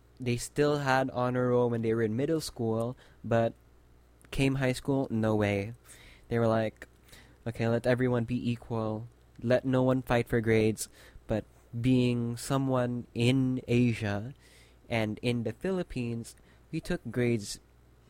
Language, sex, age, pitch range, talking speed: English, male, 20-39, 105-130 Hz, 145 wpm